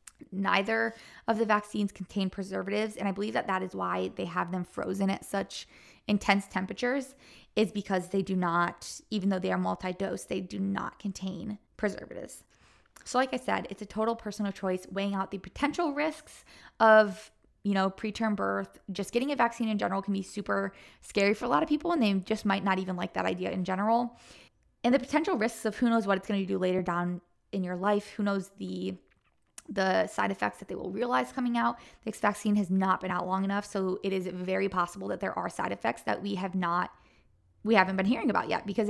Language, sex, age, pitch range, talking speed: English, female, 20-39, 185-220 Hz, 215 wpm